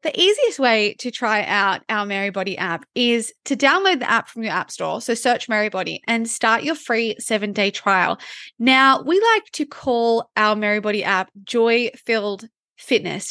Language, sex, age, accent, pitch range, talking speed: English, female, 20-39, Australian, 210-265 Hz, 165 wpm